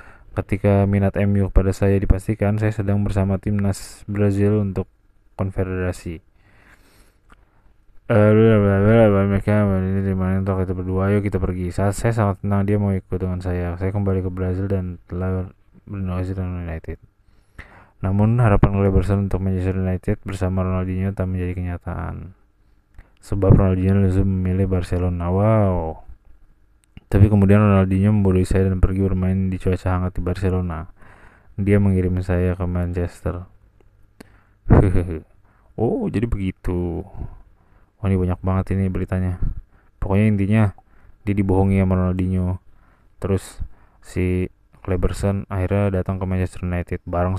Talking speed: 130 wpm